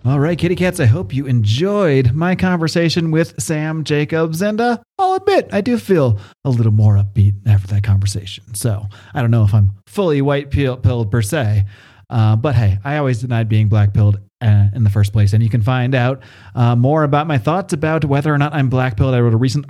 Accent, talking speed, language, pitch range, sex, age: American, 205 wpm, English, 115-145 Hz, male, 30-49